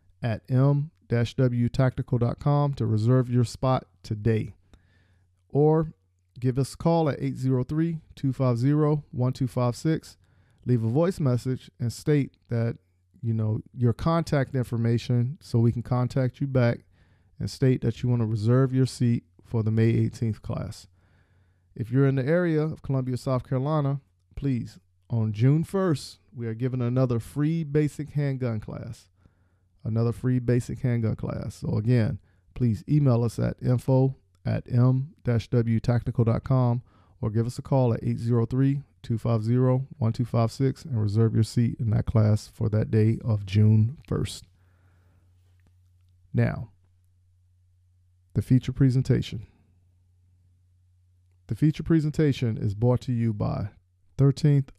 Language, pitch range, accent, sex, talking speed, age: English, 100-130 Hz, American, male, 125 wpm, 40-59